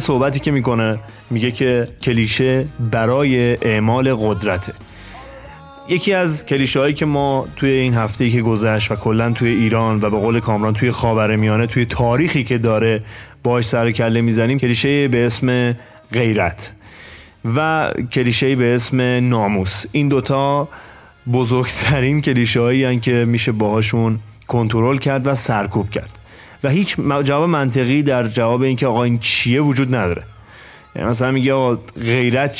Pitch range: 110-135 Hz